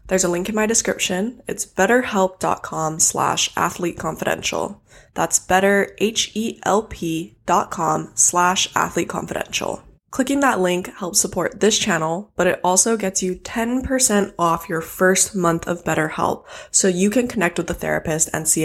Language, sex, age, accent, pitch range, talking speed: English, female, 20-39, American, 165-195 Hz, 135 wpm